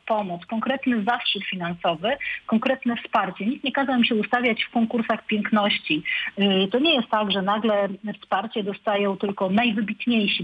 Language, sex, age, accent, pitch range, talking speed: Polish, female, 40-59, native, 200-245 Hz, 145 wpm